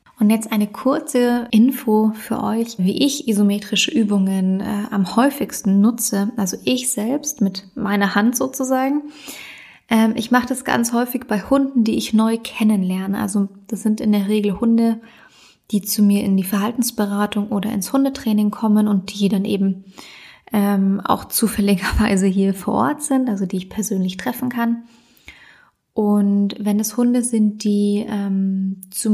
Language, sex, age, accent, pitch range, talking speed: German, female, 20-39, German, 200-235 Hz, 155 wpm